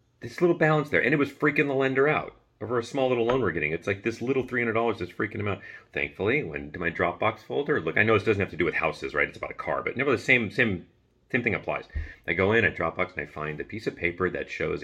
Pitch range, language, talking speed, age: 85-115 Hz, English, 285 wpm, 40-59